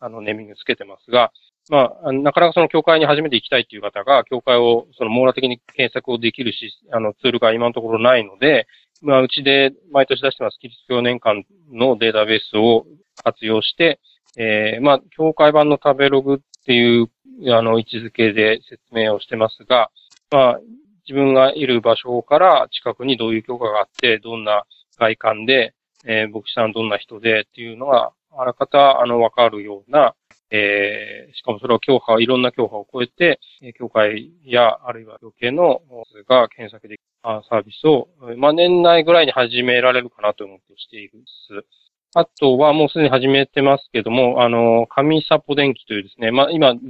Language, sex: Japanese, male